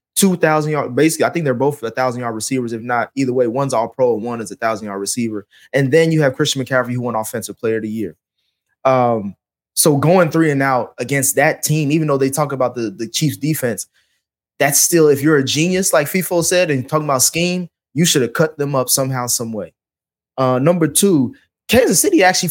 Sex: male